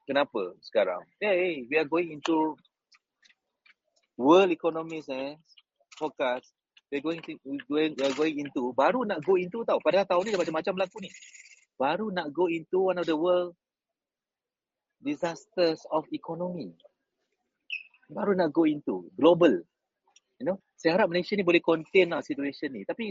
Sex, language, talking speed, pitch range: male, Malay, 155 wpm, 145-225 Hz